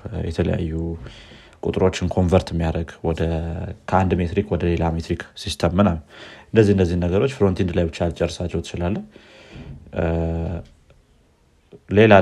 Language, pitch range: Amharic, 85-100 Hz